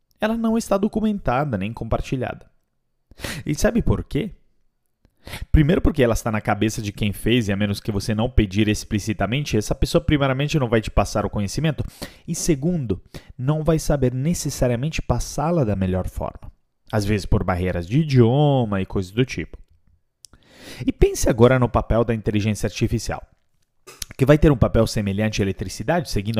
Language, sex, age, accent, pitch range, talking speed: Portuguese, male, 30-49, Brazilian, 100-145 Hz, 165 wpm